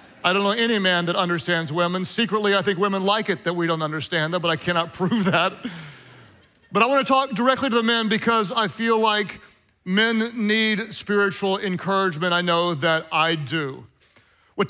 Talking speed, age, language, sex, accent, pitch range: 190 wpm, 40-59, English, male, American, 185-230 Hz